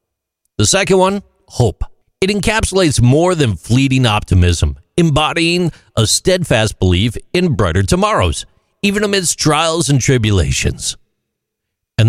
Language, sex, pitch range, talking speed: English, male, 95-150 Hz, 115 wpm